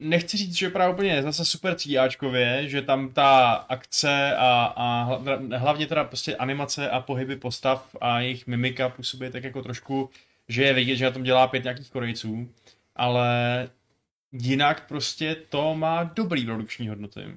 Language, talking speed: Czech, 160 wpm